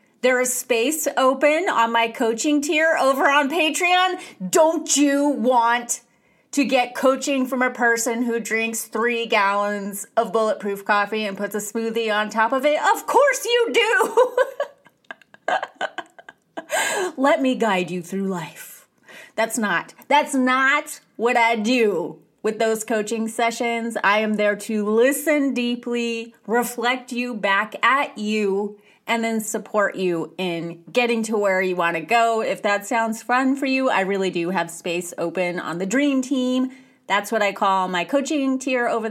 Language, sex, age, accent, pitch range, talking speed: English, female, 30-49, American, 210-285 Hz, 160 wpm